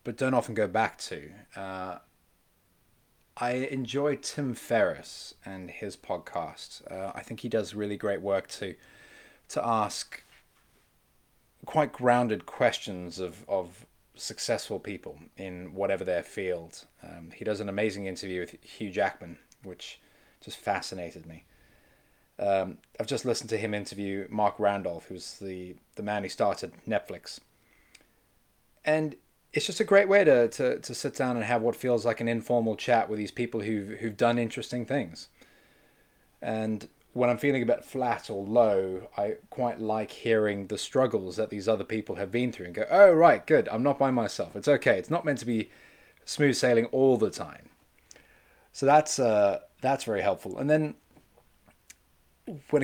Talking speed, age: 165 wpm, 20-39